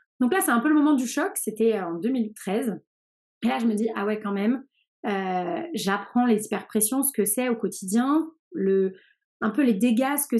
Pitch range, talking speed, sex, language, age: 200-245 Hz, 215 wpm, female, French, 30-49